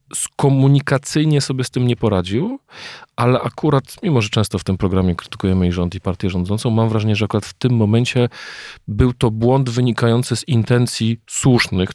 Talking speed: 170 wpm